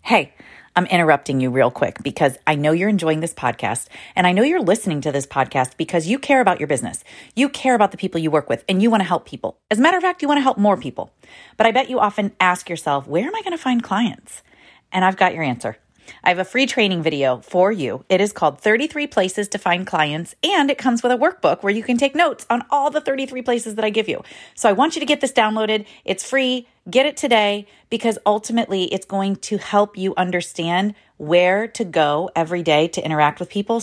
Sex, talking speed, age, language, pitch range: female, 245 wpm, 30-49, English, 155-225 Hz